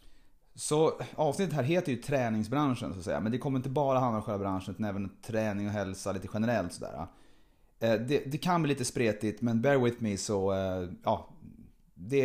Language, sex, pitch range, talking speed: Swedish, male, 100-145 Hz, 190 wpm